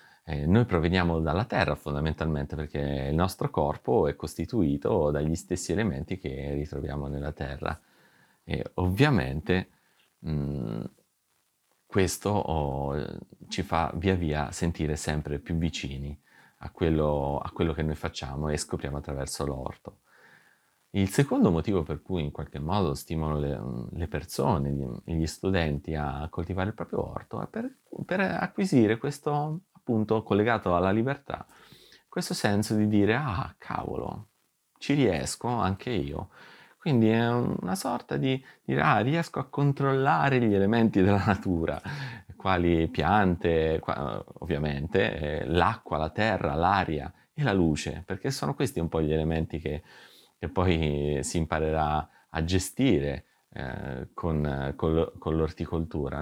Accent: native